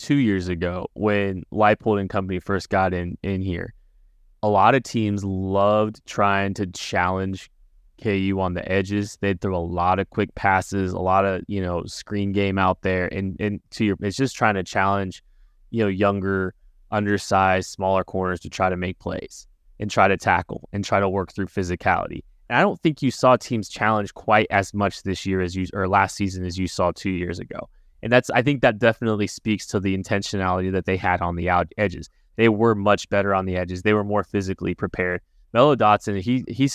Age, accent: 20-39, American